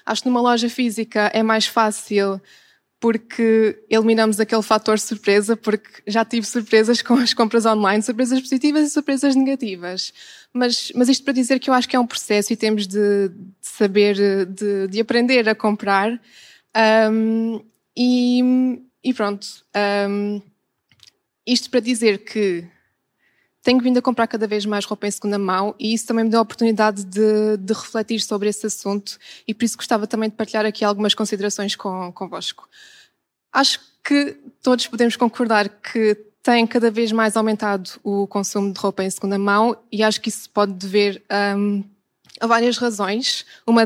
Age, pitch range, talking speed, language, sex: 20-39, 205-240 Hz, 165 wpm, Portuguese, female